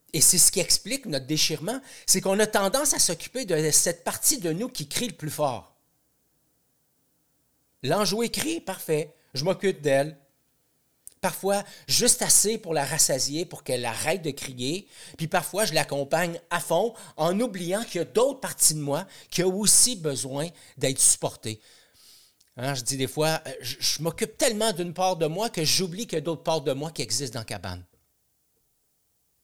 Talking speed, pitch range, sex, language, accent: 180 wpm, 135-185 Hz, male, French, Canadian